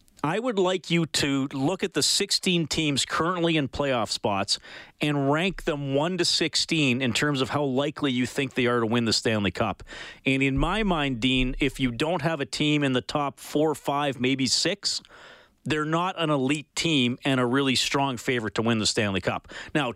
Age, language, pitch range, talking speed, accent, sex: 40-59, English, 125-175 Hz, 205 wpm, American, male